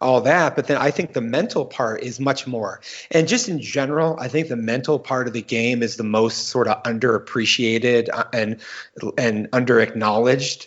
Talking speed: 185 wpm